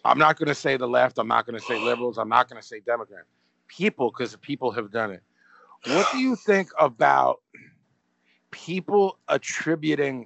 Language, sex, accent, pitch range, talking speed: English, male, American, 115-165 Hz, 185 wpm